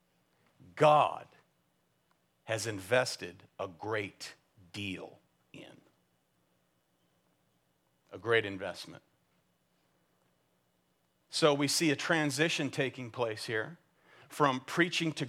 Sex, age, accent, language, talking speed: male, 50-69, American, English, 80 wpm